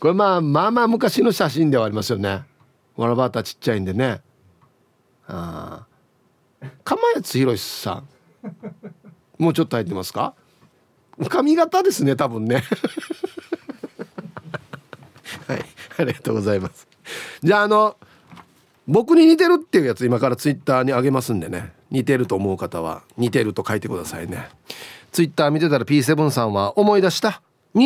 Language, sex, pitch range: Japanese, male, 135-210 Hz